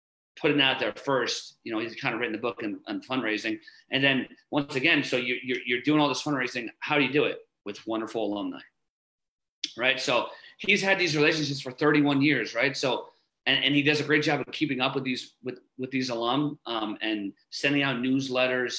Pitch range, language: 120-150 Hz, English